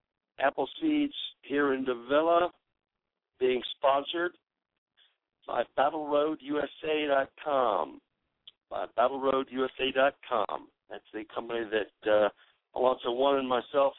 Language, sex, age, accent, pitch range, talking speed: English, male, 60-79, American, 120-175 Hz, 105 wpm